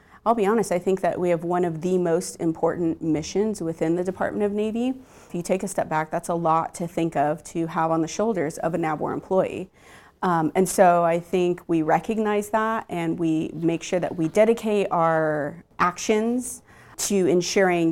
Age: 30-49